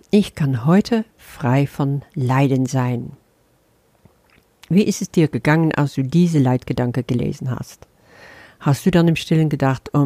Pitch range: 135-175 Hz